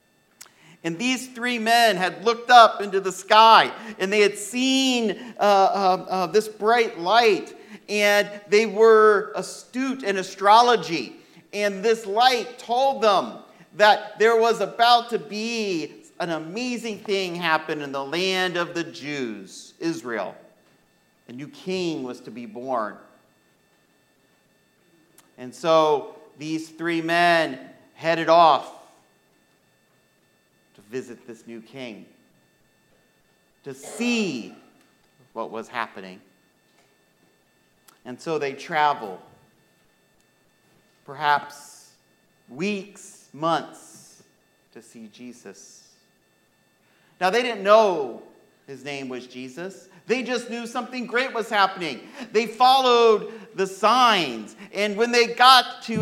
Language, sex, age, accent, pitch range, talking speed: English, male, 50-69, American, 160-225 Hz, 110 wpm